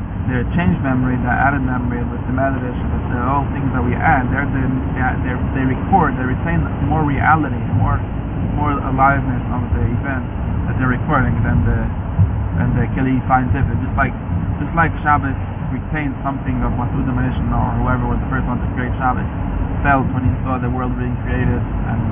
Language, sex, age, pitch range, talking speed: English, male, 20-39, 100-125 Hz, 180 wpm